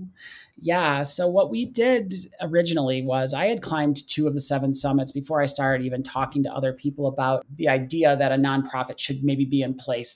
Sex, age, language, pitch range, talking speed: male, 30-49, English, 130-145 Hz, 200 wpm